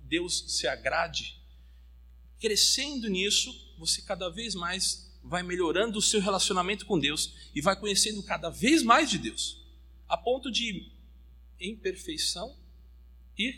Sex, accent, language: male, Brazilian, Portuguese